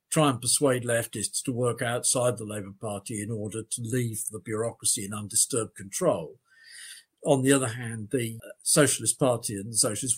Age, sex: 50-69, male